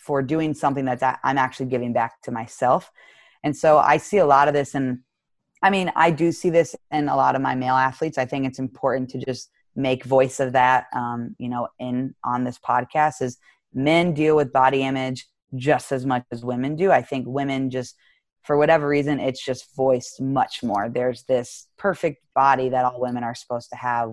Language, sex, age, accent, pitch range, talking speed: English, female, 20-39, American, 125-150 Hz, 210 wpm